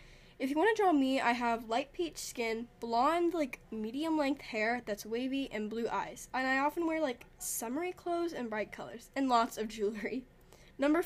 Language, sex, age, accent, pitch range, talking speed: English, female, 10-29, American, 220-300 Hz, 195 wpm